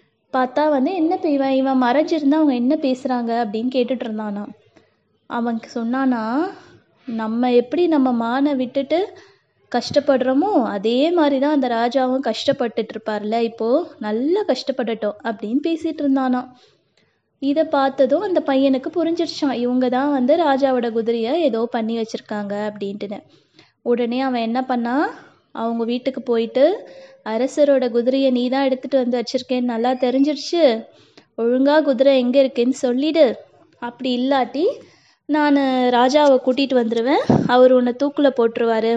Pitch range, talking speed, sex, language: 235-280 Hz, 115 wpm, female, Tamil